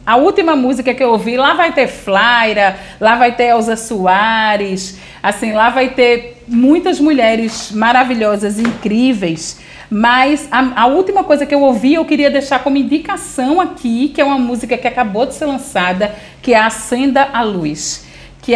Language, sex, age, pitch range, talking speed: Portuguese, female, 40-59, 210-255 Hz, 170 wpm